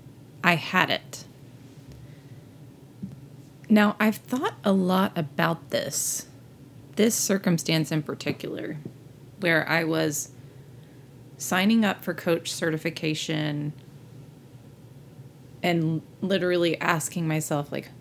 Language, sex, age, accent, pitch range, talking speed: English, female, 30-49, American, 135-180 Hz, 90 wpm